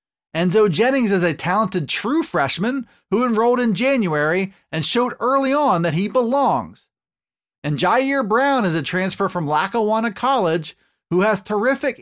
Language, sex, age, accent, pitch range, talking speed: English, male, 30-49, American, 175-245 Hz, 150 wpm